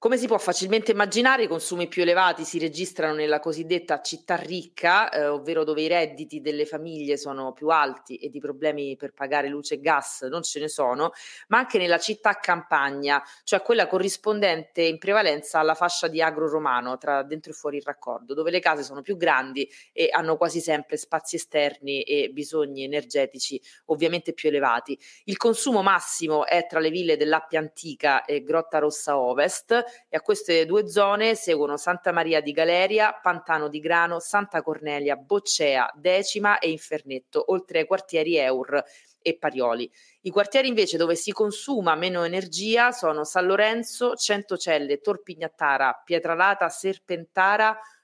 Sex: female